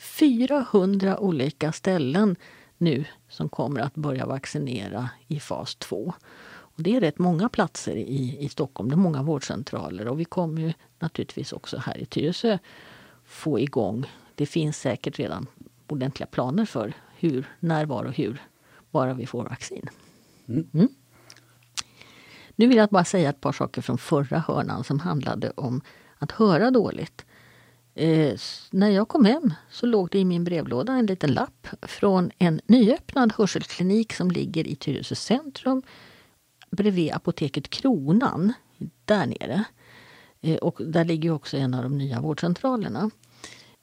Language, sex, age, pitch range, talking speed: Swedish, female, 50-69, 135-195 Hz, 145 wpm